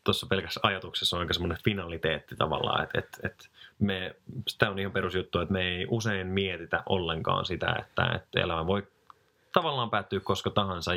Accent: native